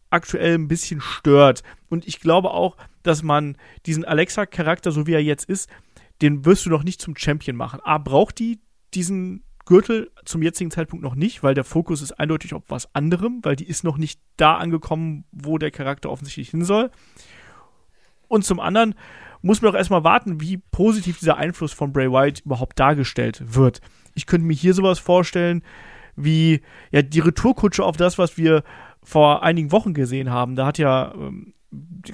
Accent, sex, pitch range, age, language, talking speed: German, male, 145-180 Hz, 40-59, German, 180 wpm